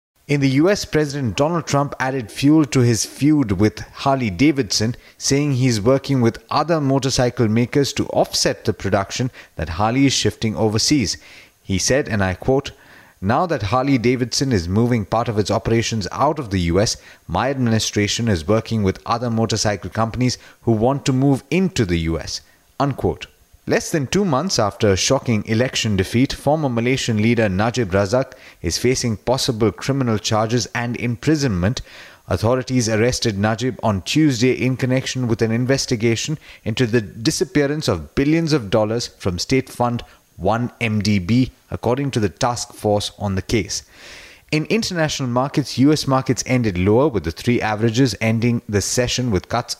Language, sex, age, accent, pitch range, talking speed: English, male, 30-49, Indian, 105-135 Hz, 155 wpm